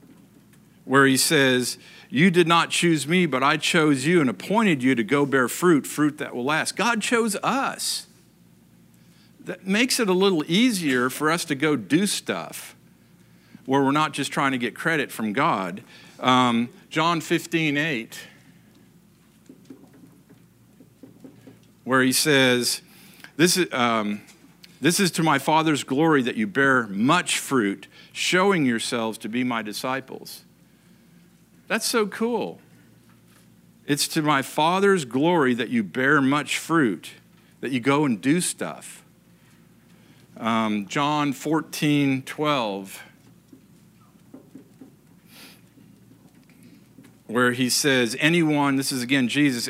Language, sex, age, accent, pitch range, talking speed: English, male, 50-69, American, 130-170 Hz, 125 wpm